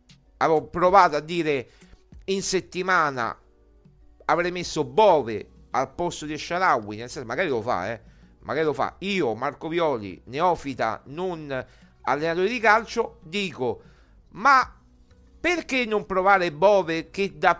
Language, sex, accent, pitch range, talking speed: Italian, male, native, 160-195 Hz, 130 wpm